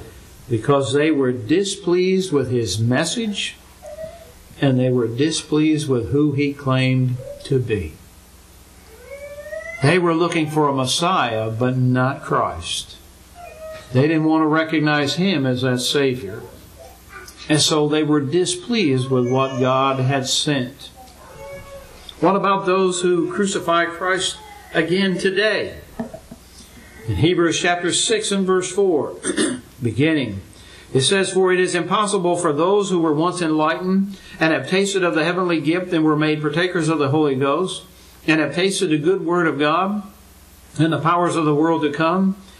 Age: 60-79